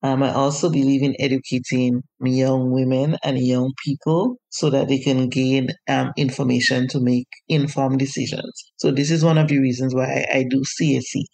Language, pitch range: English, 130-150 Hz